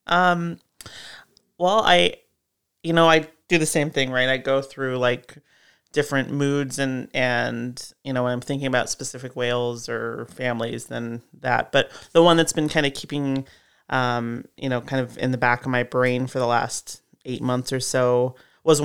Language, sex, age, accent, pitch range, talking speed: English, male, 30-49, American, 125-140 Hz, 185 wpm